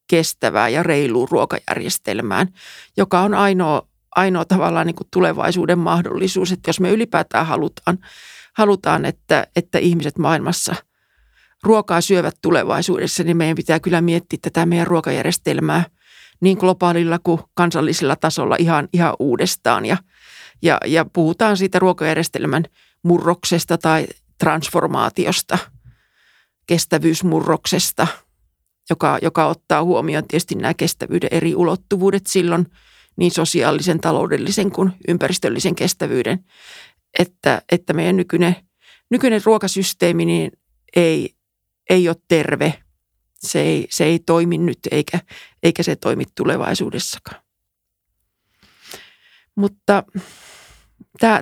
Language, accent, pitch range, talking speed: Finnish, native, 160-185 Hz, 105 wpm